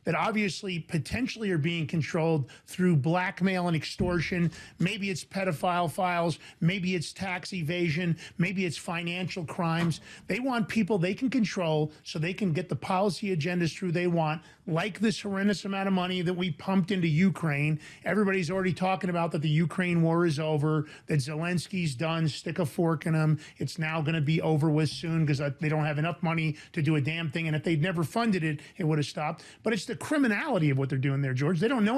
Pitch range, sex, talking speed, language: 160-205 Hz, male, 205 wpm, English